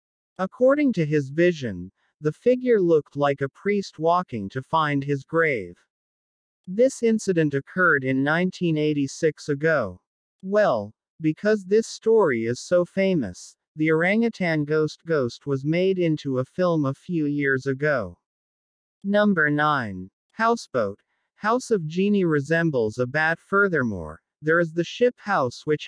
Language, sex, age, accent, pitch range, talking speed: Indonesian, male, 50-69, American, 140-190 Hz, 130 wpm